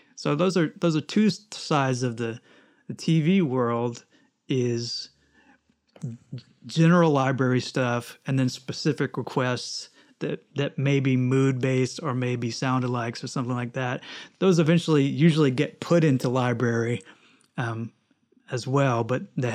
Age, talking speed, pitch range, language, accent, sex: 30-49, 135 wpm, 125-150 Hz, English, American, male